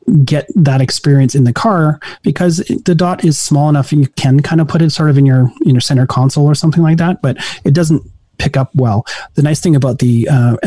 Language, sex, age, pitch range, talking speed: English, male, 30-49, 130-155 Hz, 240 wpm